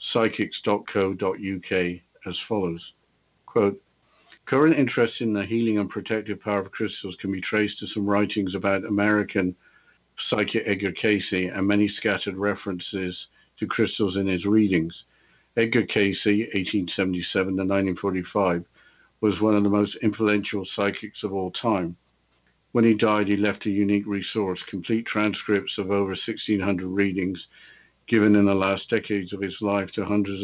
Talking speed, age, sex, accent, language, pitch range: 145 wpm, 50-69, male, British, English, 95-105 Hz